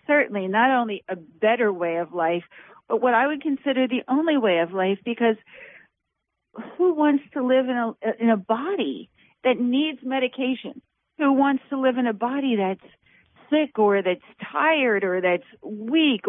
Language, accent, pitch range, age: English, American, 205-255 Hz, 50-69